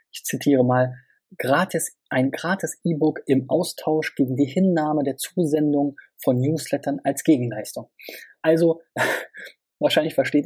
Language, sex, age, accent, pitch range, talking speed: German, male, 20-39, German, 125-155 Hz, 115 wpm